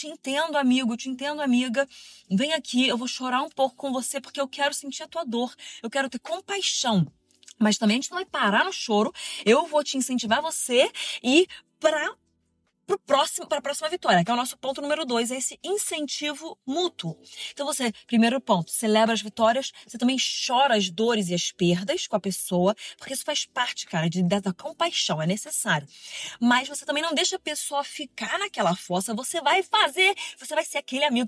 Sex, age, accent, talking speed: female, 20-39, Brazilian, 200 wpm